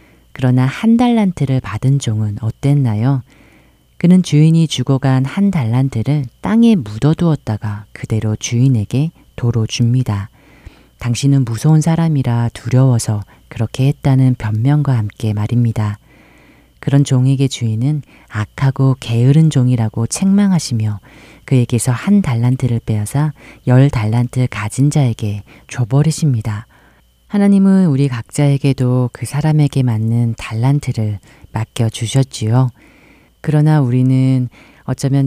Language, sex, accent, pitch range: Korean, female, native, 115-140 Hz